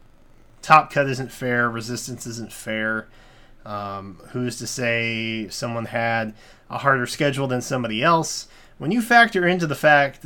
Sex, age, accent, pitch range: male, 30-49, American, 120-160 Hz